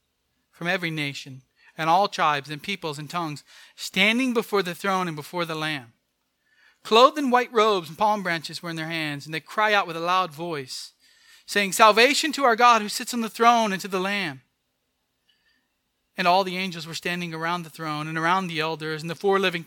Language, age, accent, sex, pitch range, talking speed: English, 30-49, American, male, 160-205 Hz, 205 wpm